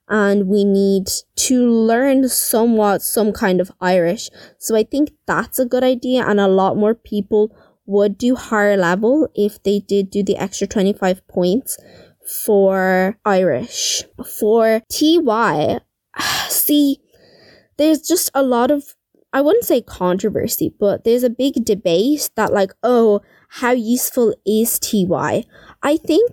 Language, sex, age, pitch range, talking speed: English, female, 20-39, 200-255 Hz, 140 wpm